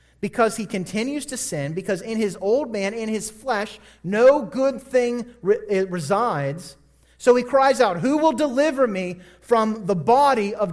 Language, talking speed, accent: English, 160 wpm, American